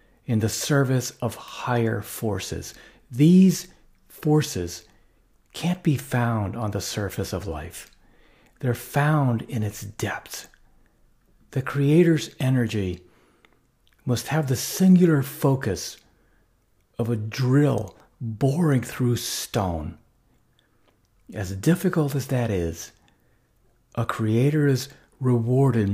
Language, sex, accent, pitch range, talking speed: English, male, American, 105-135 Hz, 100 wpm